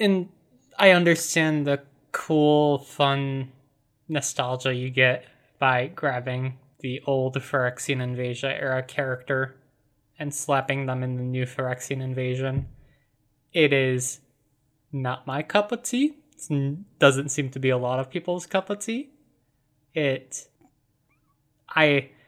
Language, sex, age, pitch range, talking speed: English, male, 20-39, 130-150 Hz, 125 wpm